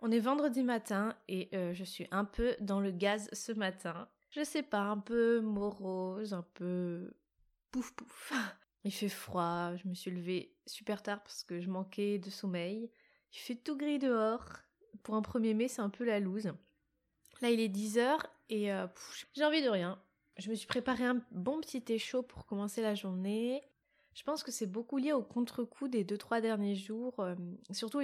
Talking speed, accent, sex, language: 195 wpm, French, female, French